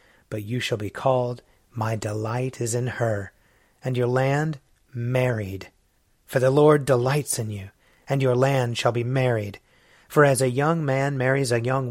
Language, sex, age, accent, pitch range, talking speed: English, male, 30-49, American, 120-145 Hz, 170 wpm